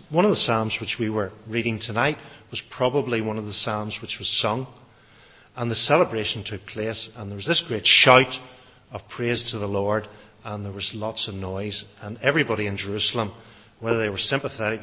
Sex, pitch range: male, 110-140 Hz